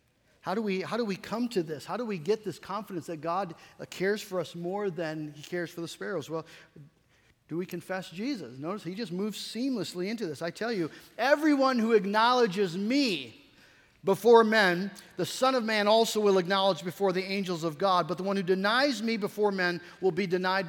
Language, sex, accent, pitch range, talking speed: English, male, American, 175-230 Hz, 200 wpm